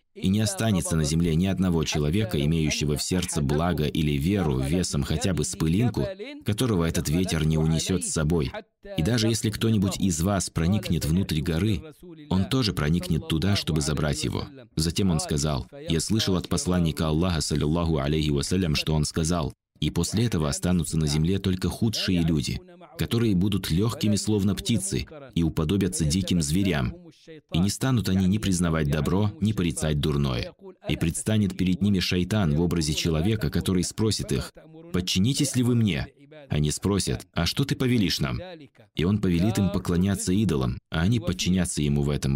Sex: male